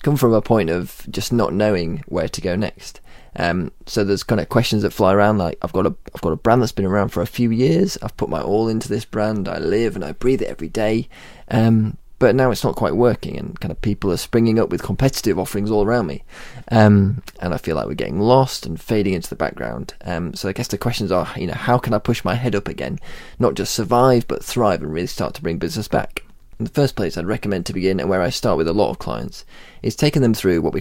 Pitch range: 100-125 Hz